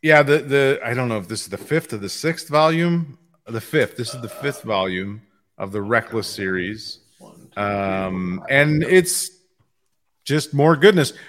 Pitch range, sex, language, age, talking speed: 110-145 Hz, male, English, 30-49, 170 wpm